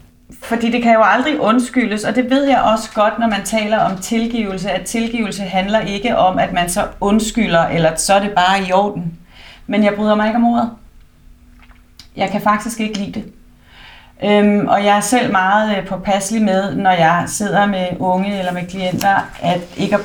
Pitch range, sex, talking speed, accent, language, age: 185-220 Hz, female, 195 wpm, native, Danish, 30-49